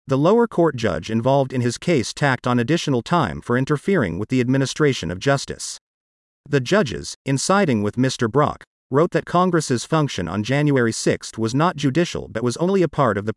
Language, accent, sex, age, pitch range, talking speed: English, American, male, 40-59, 115-155 Hz, 195 wpm